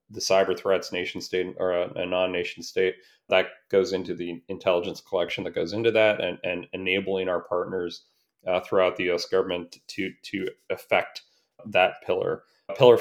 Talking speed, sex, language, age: 160 wpm, male, English, 30-49